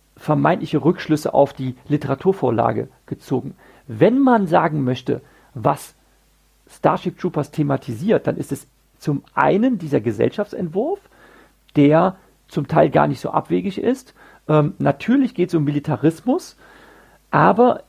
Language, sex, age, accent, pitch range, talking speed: German, male, 40-59, German, 150-205 Hz, 120 wpm